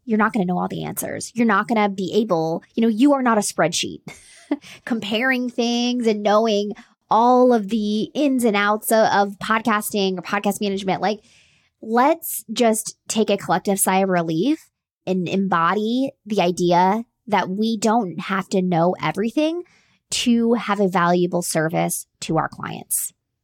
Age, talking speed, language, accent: 20-39, 165 wpm, English, American